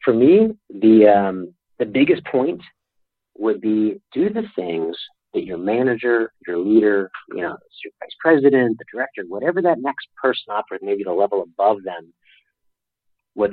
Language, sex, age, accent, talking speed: English, male, 40-59, American, 155 wpm